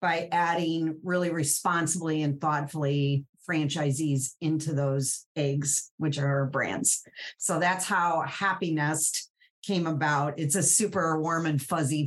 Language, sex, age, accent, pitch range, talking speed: English, female, 40-59, American, 150-185 Hz, 135 wpm